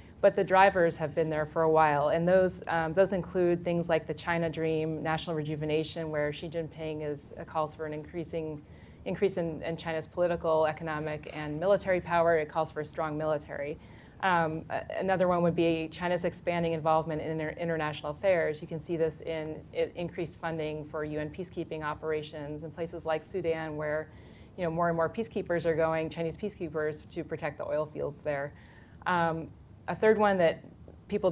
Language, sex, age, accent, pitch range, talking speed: English, female, 30-49, American, 155-170 Hz, 180 wpm